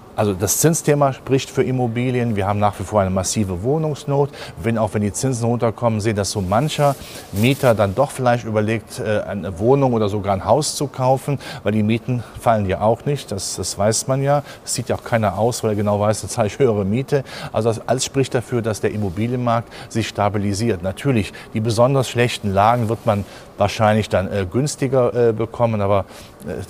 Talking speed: 200 wpm